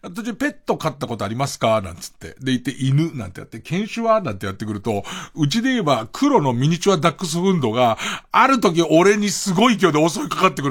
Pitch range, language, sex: 120-190 Hz, Japanese, male